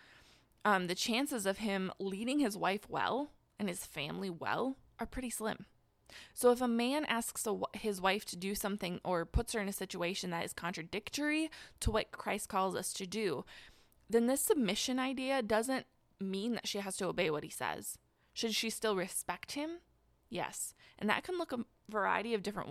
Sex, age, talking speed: female, 20-39, 185 wpm